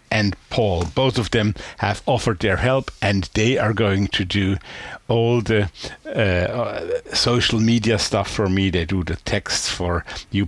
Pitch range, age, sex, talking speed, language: 90-115 Hz, 50-69, male, 170 wpm, English